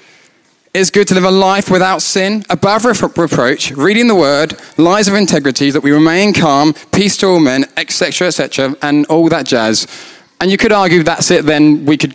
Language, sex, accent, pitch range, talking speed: English, male, British, 145-190 Hz, 195 wpm